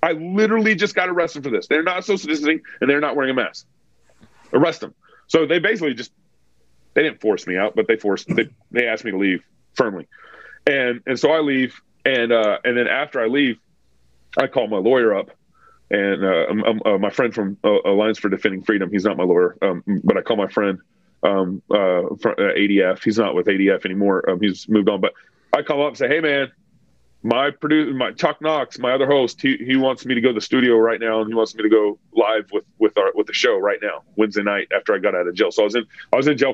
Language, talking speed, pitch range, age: English, 240 wpm, 105-145 Hz, 30-49